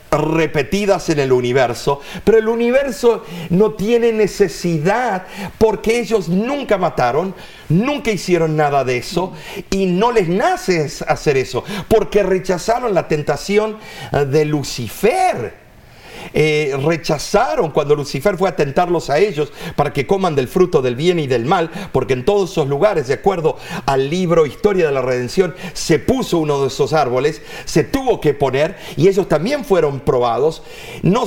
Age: 50-69